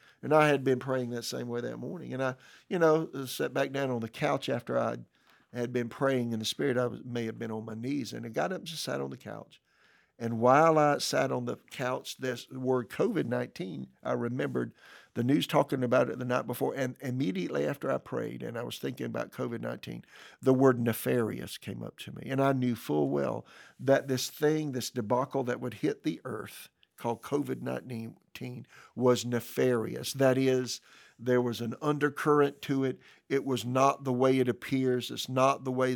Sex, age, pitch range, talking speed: male, 50-69, 120-135 Hz, 200 wpm